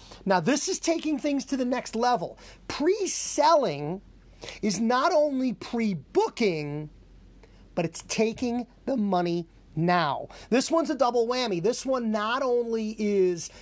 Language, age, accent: English, 40-59, American